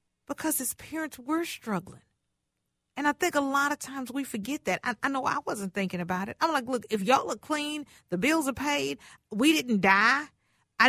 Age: 40-59